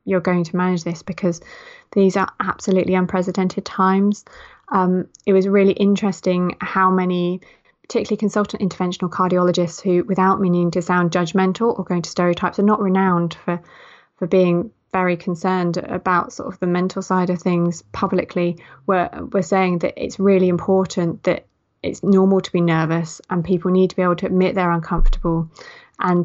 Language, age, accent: English, 20-39, British